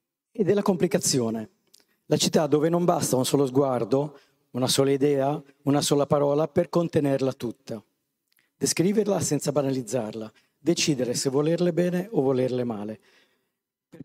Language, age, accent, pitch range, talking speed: Italian, 40-59, native, 125-145 Hz, 130 wpm